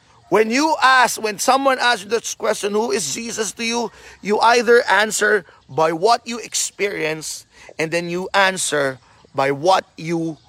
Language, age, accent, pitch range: Filipino, 30-49, native, 150-240 Hz